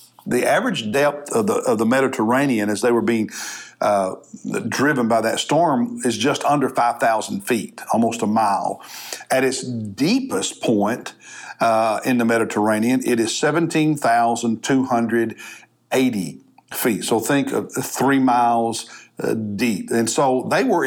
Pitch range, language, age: 115-150 Hz, English, 60-79